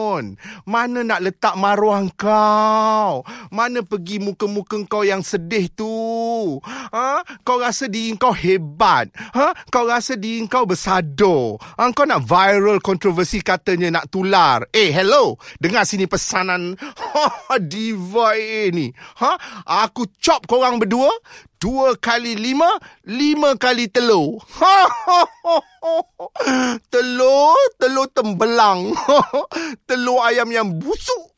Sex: male